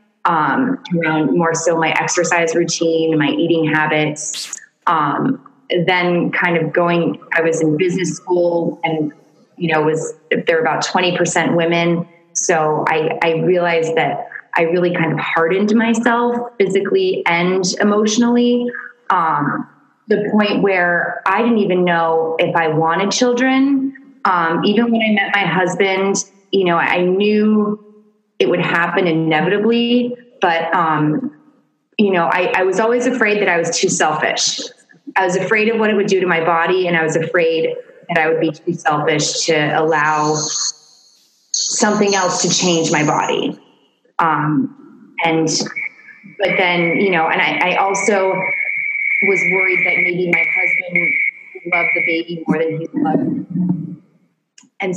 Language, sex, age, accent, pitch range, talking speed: English, female, 20-39, American, 165-210 Hz, 150 wpm